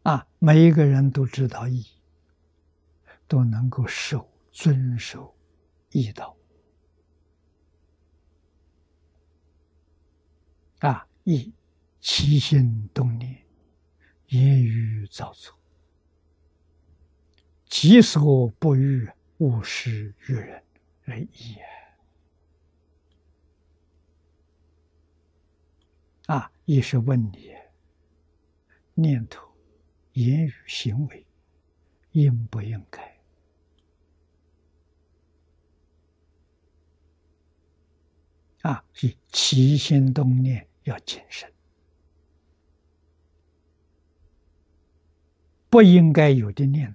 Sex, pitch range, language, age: male, 80-110 Hz, Chinese, 60-79